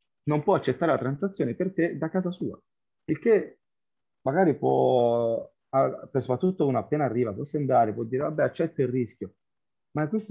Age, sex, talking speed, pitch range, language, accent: 30-49, male, 170 wpm, 110-145 Hz, Italian, native